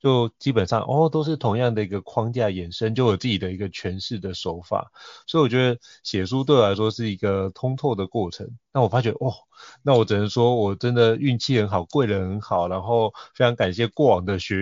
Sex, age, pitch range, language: male, 30-49, 100-125 Hz, Chinese